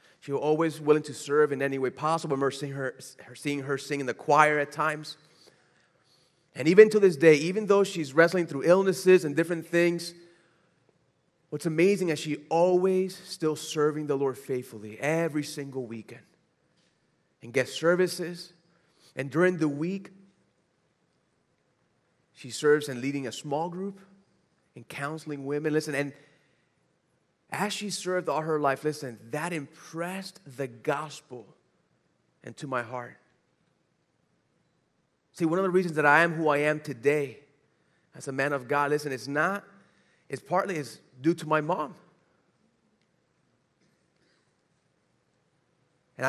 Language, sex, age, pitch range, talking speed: English, male, 30-49, 140-170 Hz, 140 wpm